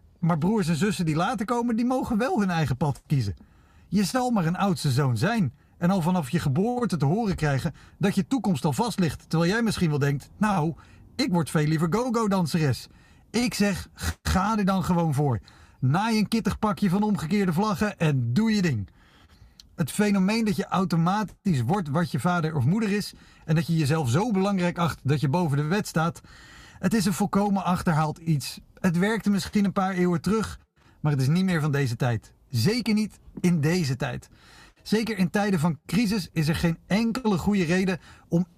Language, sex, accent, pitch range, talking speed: Dutch, male, Dutch, 155-205 Hz, 200 wpm